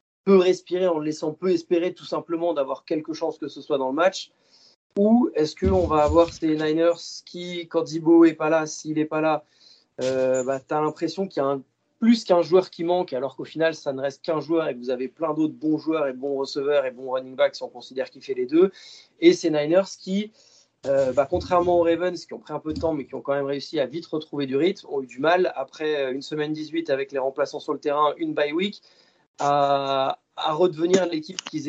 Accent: French